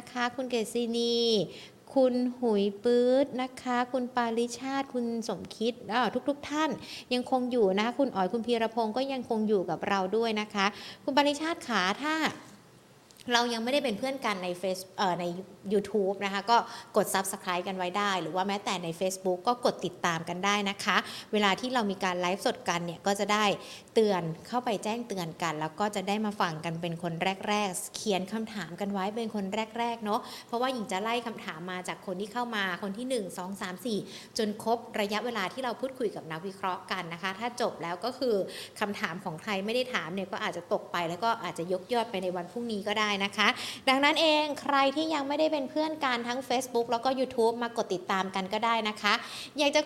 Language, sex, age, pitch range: Thai, female, 60-79, 195-245 Hz